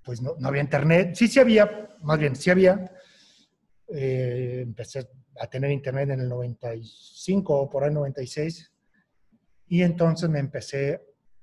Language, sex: Spanish, male